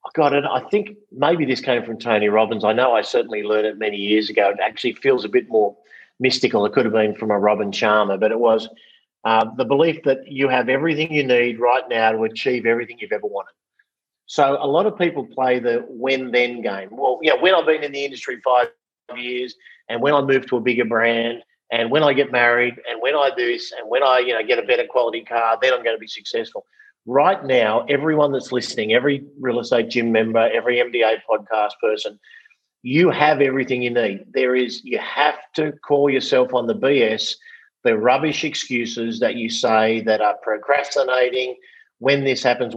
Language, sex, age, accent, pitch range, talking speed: English, male, 40-59, Australian, 115-150 Hz, 215 wpm